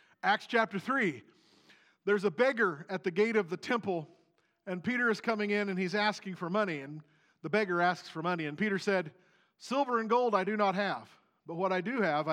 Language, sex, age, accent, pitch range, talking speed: English, male, 40-59, American, 175-215 Hz, 210 wpm